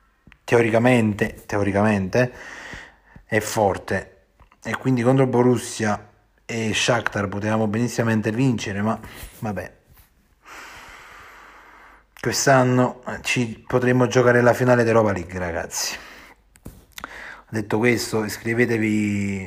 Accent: native